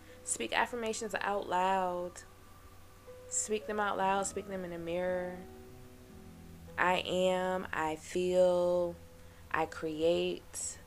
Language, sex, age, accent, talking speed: English, female, 20-39, American, 105 wpm